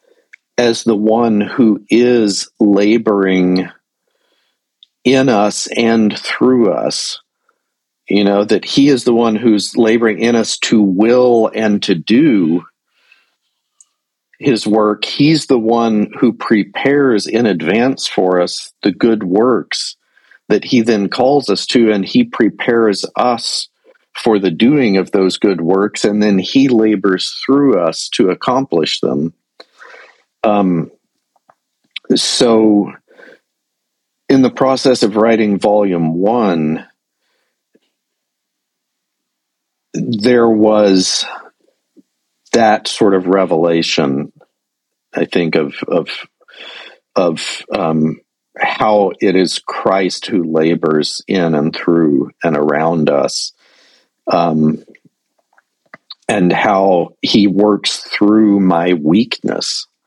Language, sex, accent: English, male, American